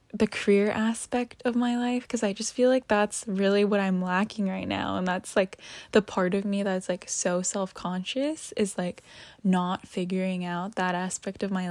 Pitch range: 185-230 Hz